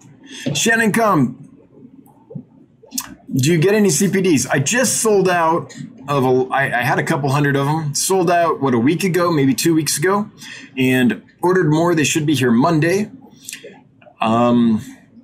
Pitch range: 125-165 Hz